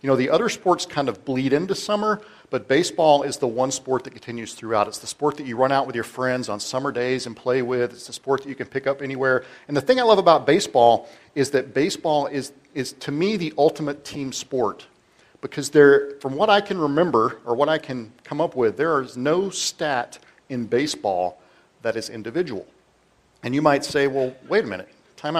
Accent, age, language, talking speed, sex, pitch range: American, 40-59, English, 220 wpm, male, 120-150 Hz